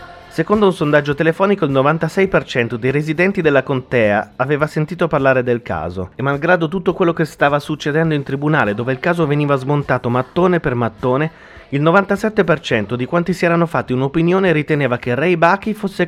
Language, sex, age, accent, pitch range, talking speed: Italian, male, 30-49, native, 125-175 Hz, 170 wpm